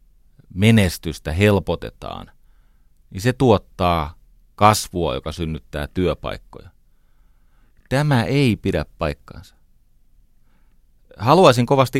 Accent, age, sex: native, 30-49, male